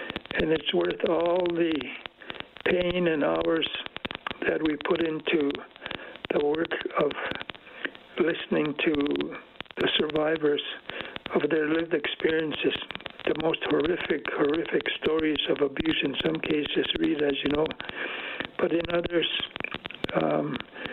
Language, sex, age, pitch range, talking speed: English, male, 60-79, 150-175 Hz, 120 wpm